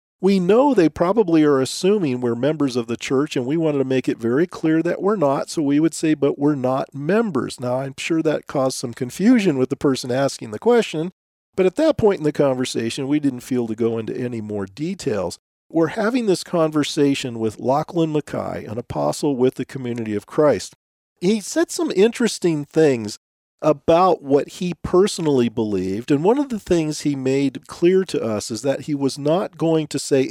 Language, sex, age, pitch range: English, male, 50-69, 120-160 Hz